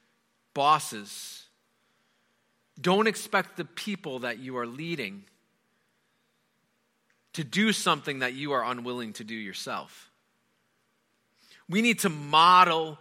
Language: English